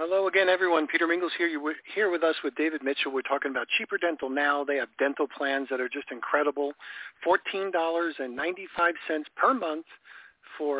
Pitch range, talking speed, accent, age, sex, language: 140-165 Hz, 170 wpm, American, 50-69, male, English